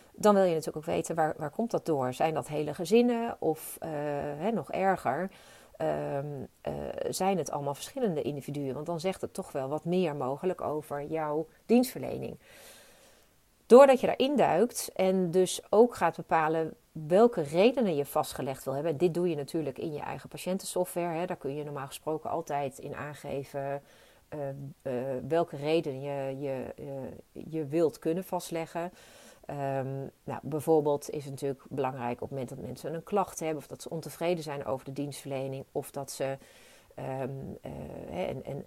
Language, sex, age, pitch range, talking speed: Dutch, female, 40-59, 140-175 Hz, 170 wpm